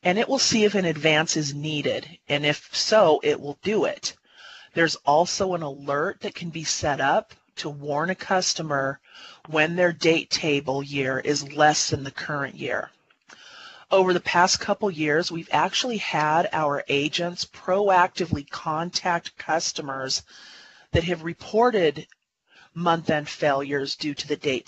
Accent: American